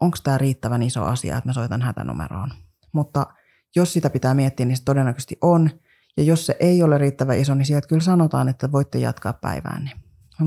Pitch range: 130-160 Hz